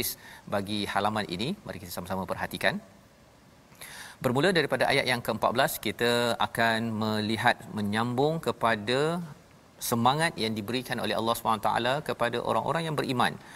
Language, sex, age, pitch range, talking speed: Malayalam, male, 40-59, 105-125 Hz, 125 wpm